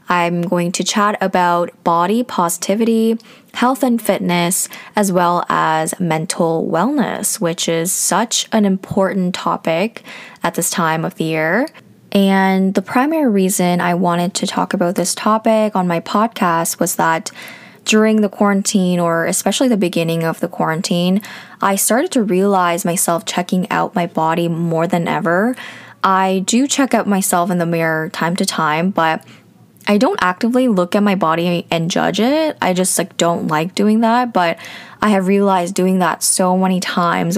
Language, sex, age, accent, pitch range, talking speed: English, female, 10-29, American, 175-215 Hz, 165 wpm